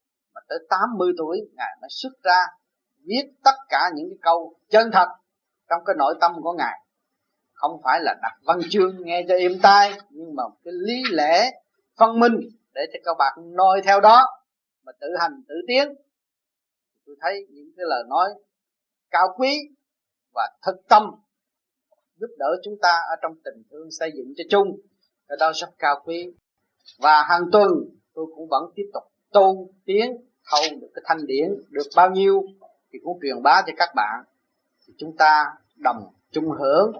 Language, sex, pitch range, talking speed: Vietnamese, male, 165-245 Hz, 180 wpm